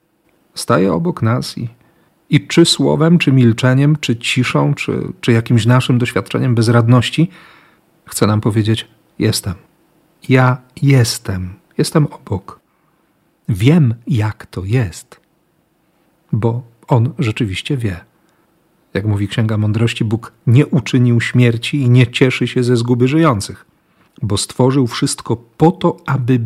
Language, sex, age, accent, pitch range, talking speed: Polish, male, 40-59, native, 115-145 Hz, 120 wpm